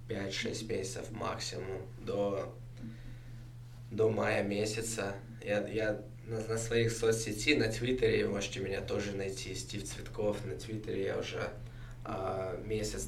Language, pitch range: Russian, 105-120 Hz